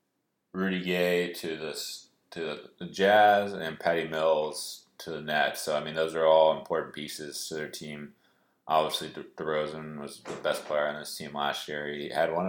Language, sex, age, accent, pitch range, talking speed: English, male, 20-39, American, 75-85 Hz, 185 wpm